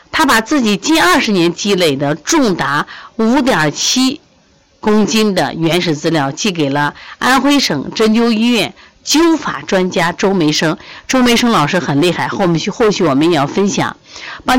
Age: 50-69